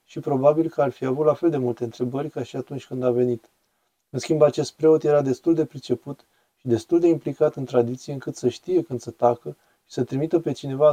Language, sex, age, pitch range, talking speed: Romanian, male, 20-39, 125-150 Hz, 230 wpm